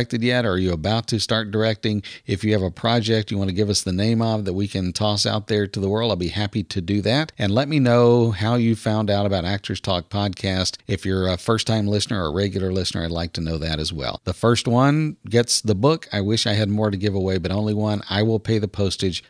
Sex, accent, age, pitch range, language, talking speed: male, American, 50-69, 95-115 Hz, English, 265 wpm